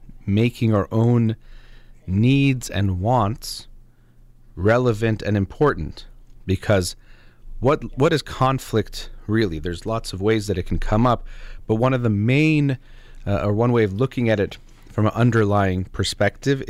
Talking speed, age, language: 145 wpm, 30-49, English